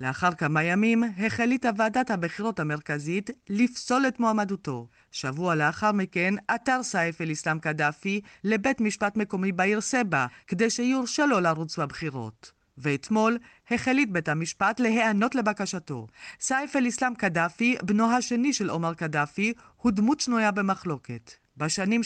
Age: 40-59